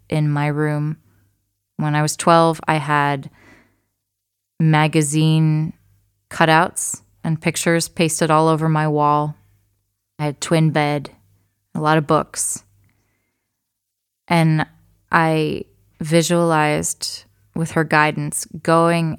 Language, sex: English, female